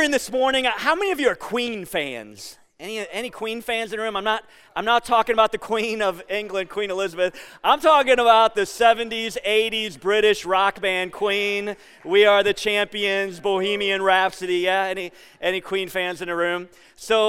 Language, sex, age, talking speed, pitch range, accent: English, male, 30-49, 185 wpm, 170-220 Hz, American